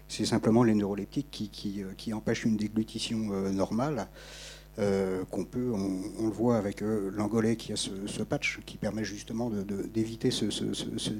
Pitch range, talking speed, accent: 105-130 Hz, 145 wpm, French